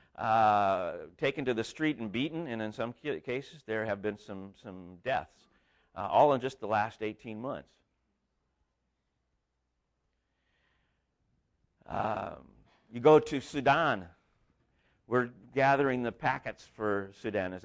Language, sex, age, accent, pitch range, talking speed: English, male, 50-69, American, 110-140 Hz, 125 wpm